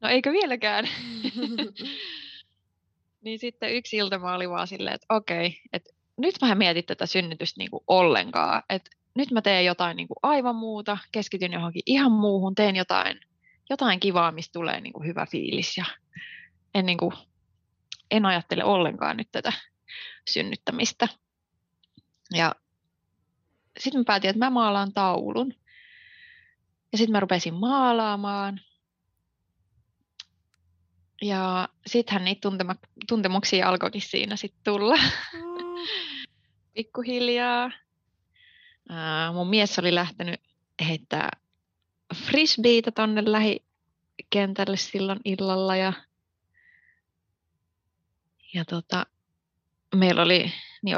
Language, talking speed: Finnish, 105 wpm